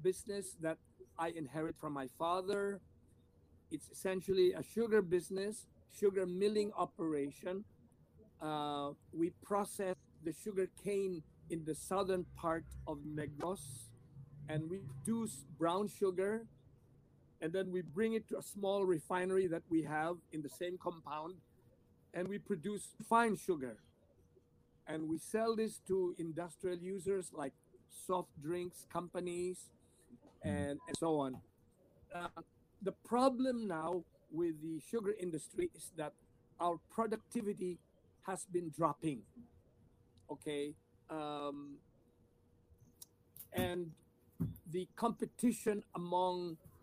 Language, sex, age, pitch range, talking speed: Filipino, male, 50-69, 145-195 Hz, 115 wpm